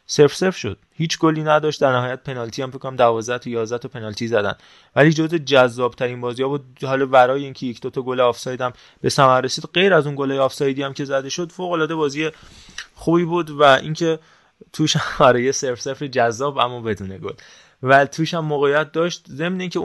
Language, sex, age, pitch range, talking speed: Persian, male, 20-39, 120-155 Hz, 205 wpm